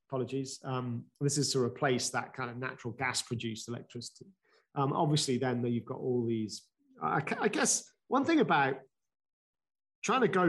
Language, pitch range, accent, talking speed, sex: English, 120-150 Hz, British, 165 wpm, male